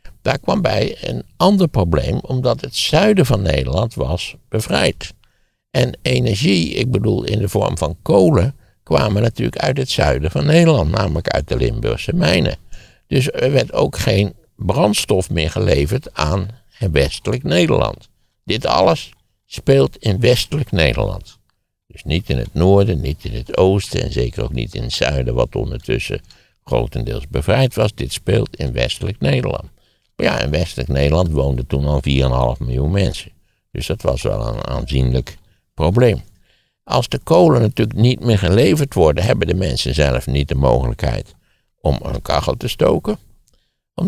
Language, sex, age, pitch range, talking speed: Dutch, male, 60-79, 70-115 Hz, 160 wpm